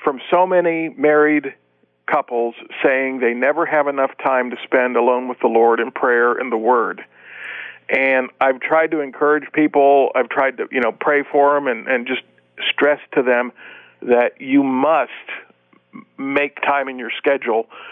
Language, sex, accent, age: English, male, American, 50-69